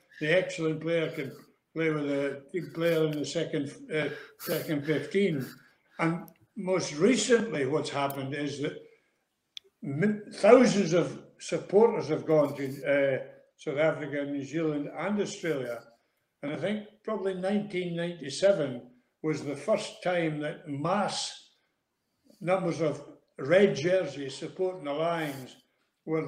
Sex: male